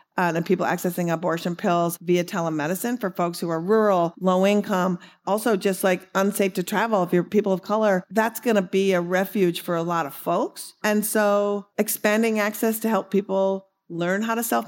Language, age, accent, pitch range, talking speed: English, 40-59, American, 175-225 Hz, 195 wpm